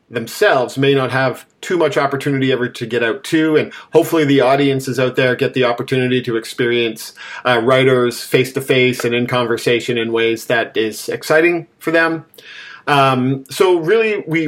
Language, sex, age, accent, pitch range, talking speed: English, male, 40-59, American, 125-140 Hz, 175 wpm